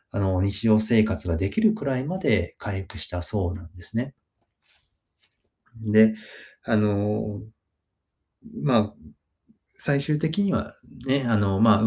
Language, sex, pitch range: Japanese, male, 95-120 Hz